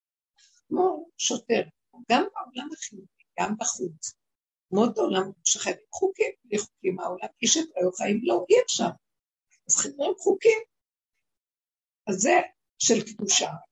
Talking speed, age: 120 wpm, 60-79